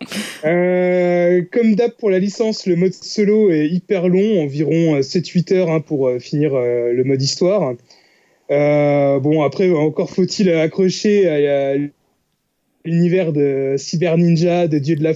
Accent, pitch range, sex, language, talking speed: French, 150-190 Hz, male, French, 145 wpm